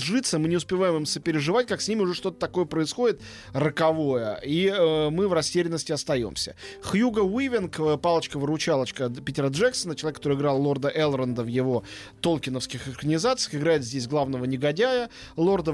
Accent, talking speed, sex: native, 150 wpm, male